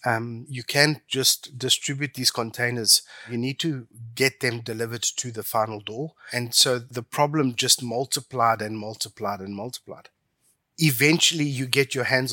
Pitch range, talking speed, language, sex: 110-140 Hz, 155 wpm, English, male